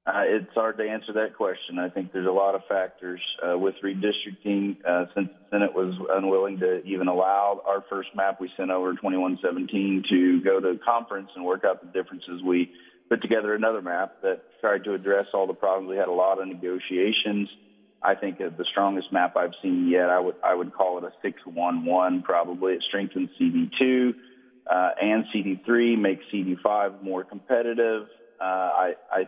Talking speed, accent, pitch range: 185 wpm, American, 90-105 Hz